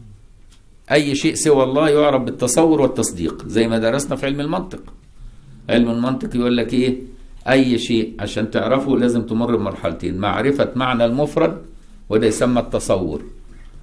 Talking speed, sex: 135 wpm, male